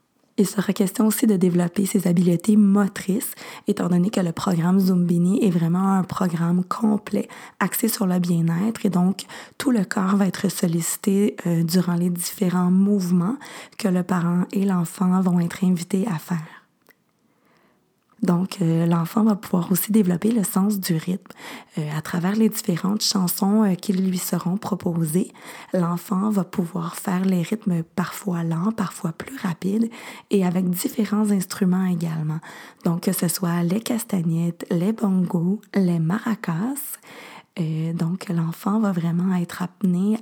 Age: 20-39